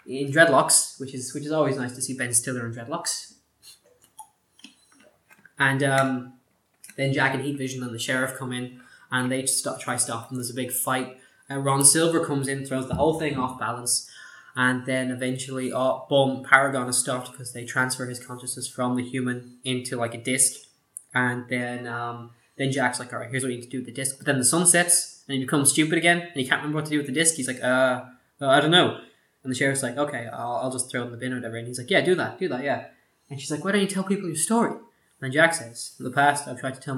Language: English